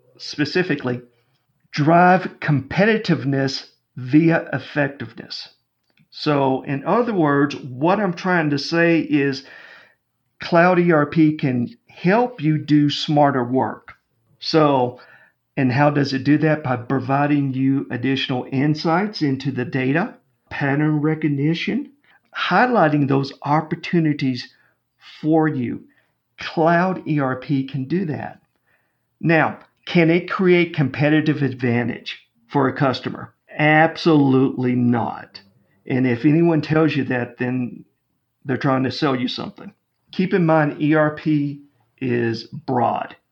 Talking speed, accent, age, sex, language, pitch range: 110 wpm, American, 50-69, male, English, 130-160 Hz